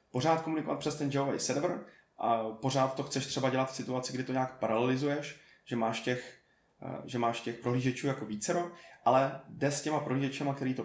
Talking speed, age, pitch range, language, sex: 190 wpm, 20-39, 120-135 Hz, Czech, male